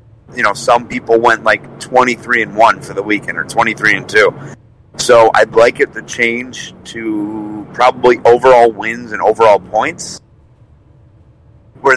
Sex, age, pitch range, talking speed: male, 30-49, 110-135 Hz, 150 wpm